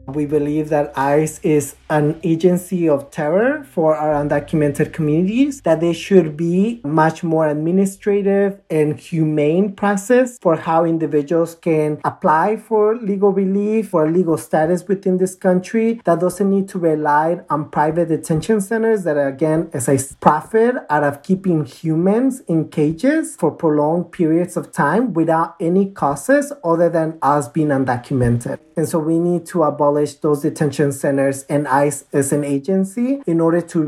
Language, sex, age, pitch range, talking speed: English, male, 40-59, 145-180 Hz, 155 wpm